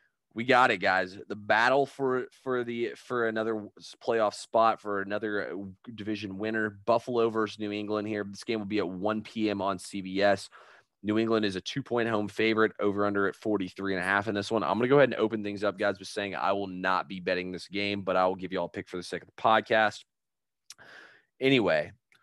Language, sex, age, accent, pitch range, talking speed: English, male, 20-39, American, 100-120 Hz, 220 wpm